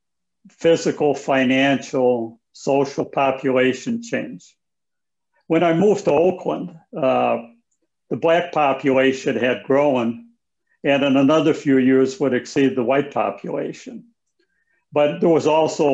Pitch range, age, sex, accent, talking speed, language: 130-165 Hz, 60-79, male, American, 115 wpm, English